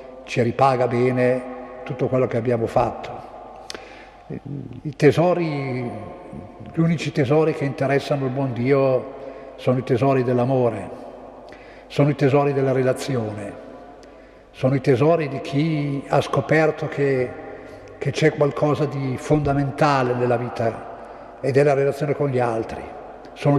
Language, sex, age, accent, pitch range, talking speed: Italian, male, 50-69, native, 130-150 Hz, 125 wpm